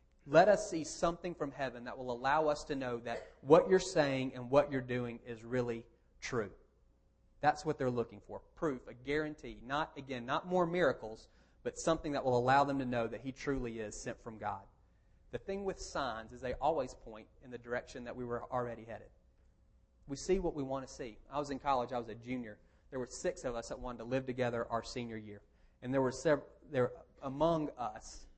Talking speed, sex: 215 wpm, male